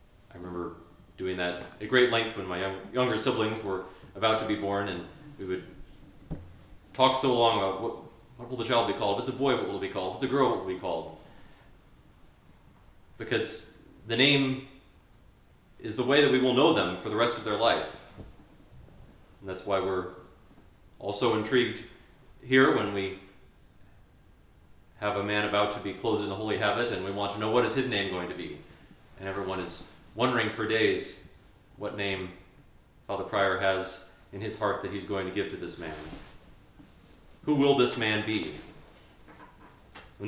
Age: 30-49